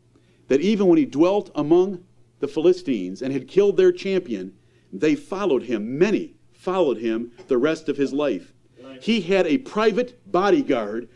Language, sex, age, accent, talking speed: English, male, 50-69, American, 155 wpm